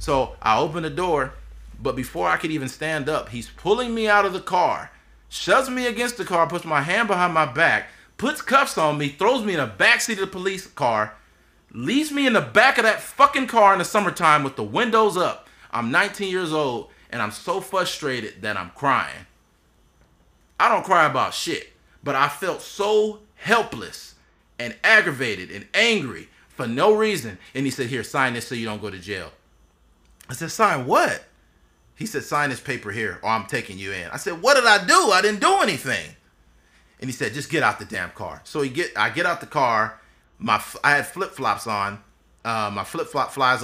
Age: 30-49